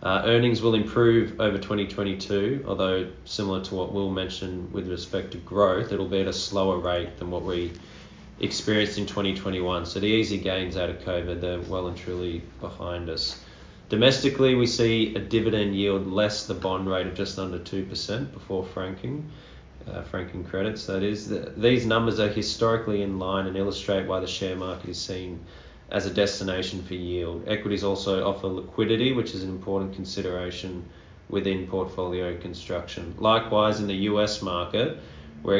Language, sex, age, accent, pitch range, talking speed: English, male, 20-39, Australian, 90-100 Hz, 170 wpm